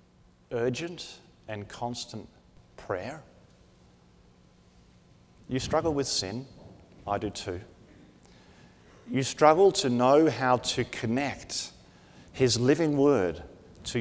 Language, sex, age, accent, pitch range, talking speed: English, male, 50-69, Australian, 120-195 Hz, 95 wpm